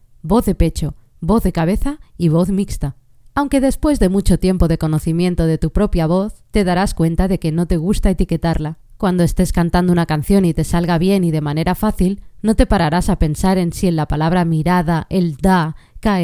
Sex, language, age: female, Spanish, 20-39